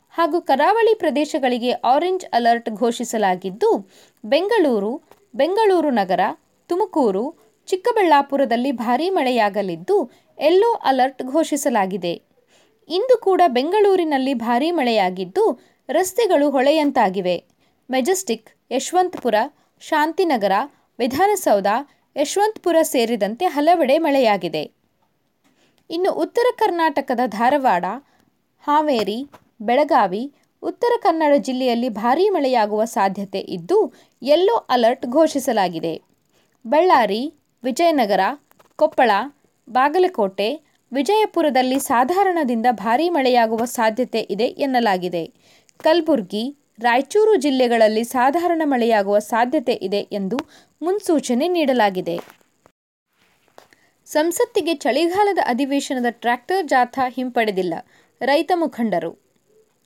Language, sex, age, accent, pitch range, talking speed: Kannada, female, 20-39, native, 230-335 Hz, 75 wpm